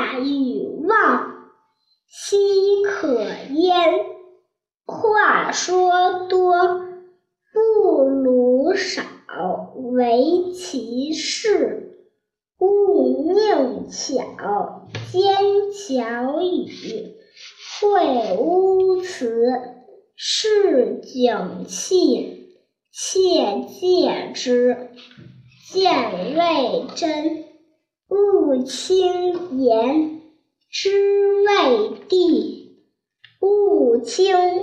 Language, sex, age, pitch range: Chinese, male, 50-69, 270-390 Hz